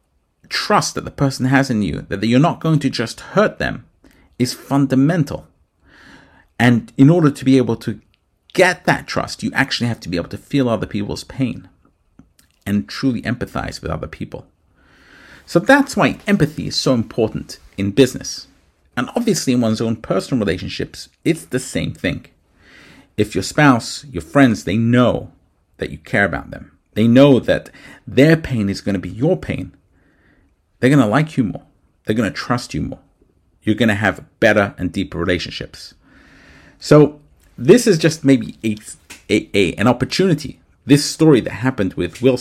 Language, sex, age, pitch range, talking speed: English, male, 50-69, 100-135 Hz, 175 wpm